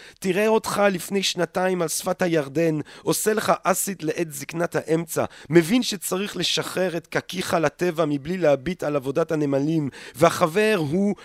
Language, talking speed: Hebrew, 140 wpm